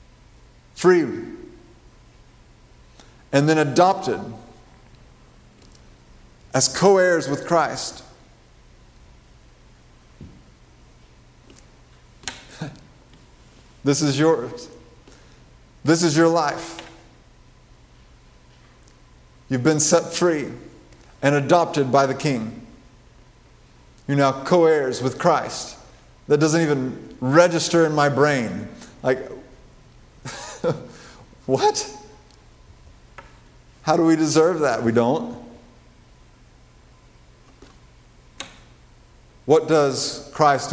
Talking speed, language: 70 wpm, English